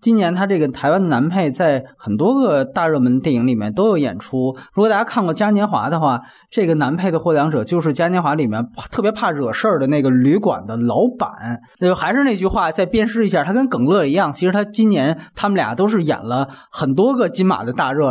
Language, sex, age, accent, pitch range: Chinese, male, 20-39, native, 130-200 Hz